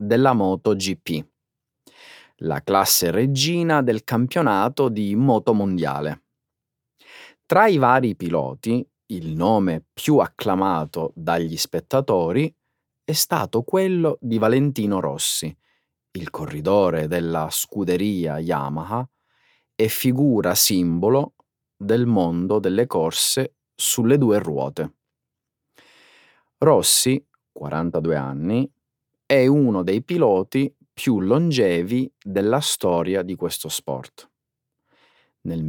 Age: 30-49